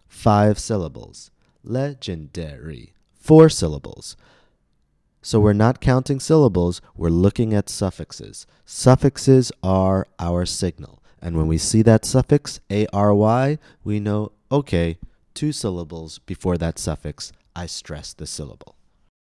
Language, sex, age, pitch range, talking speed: English, male, 30-49, 85-115 Hz, 115 wpm